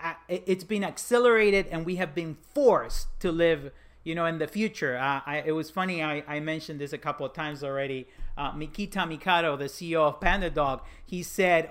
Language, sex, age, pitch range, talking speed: English, male, 40-59, 140-175 Hz, 195 wpm